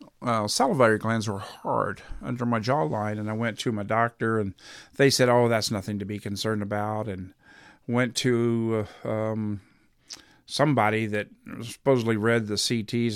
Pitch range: 110-125 Hz